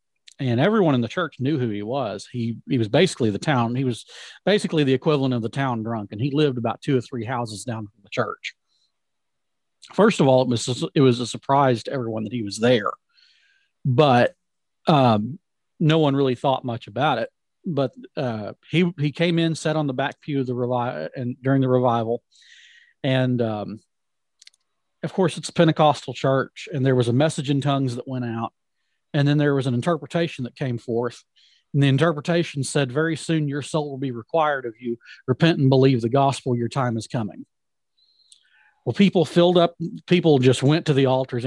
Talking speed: 200 wpm